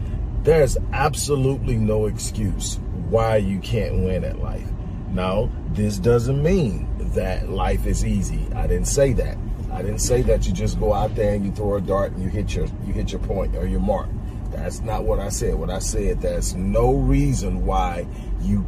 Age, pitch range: 40-59, 95-115 Hz